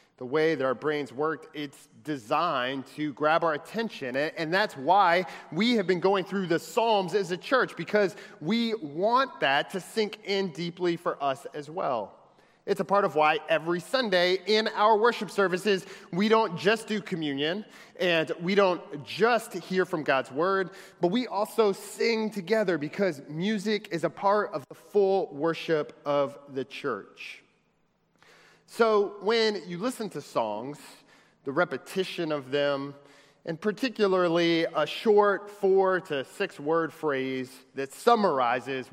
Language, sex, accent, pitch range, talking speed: English, male, American, 155-205 Hz, 150 wpm